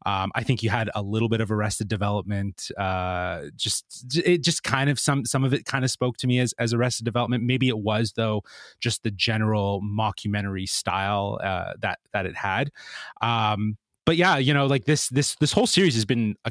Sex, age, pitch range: male, 30-49, 100-125 Hz